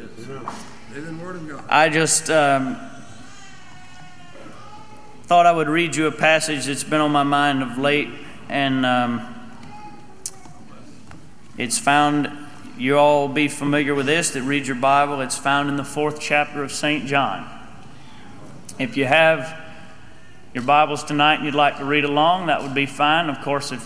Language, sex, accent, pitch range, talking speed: English, male, American, 145-170 Hz, 150 wpm